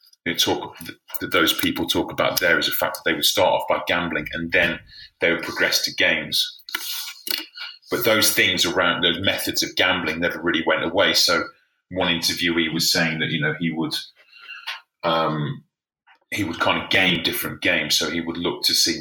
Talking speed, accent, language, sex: 190 wpm, British, English, male